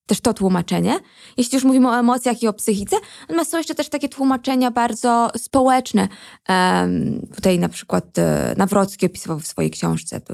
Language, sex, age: Polish, female, 20-39